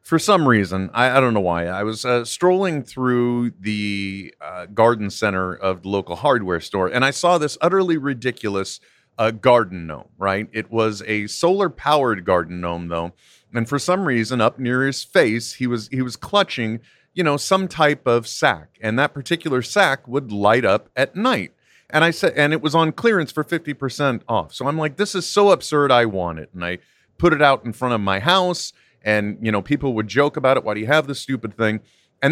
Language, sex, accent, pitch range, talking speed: English, male, American, 110-155 Hz, 215 wpm